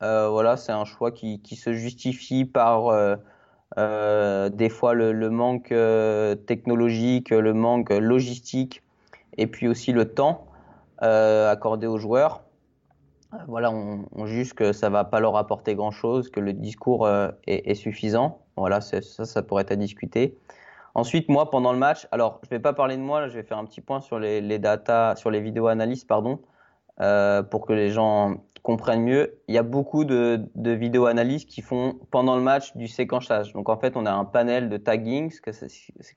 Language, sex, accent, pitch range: French, male, French, 110-125 Hz